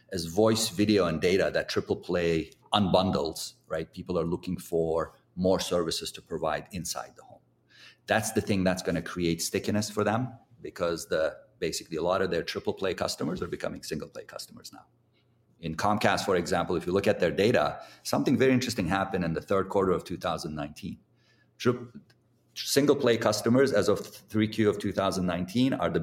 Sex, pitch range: male, 90-115 Hz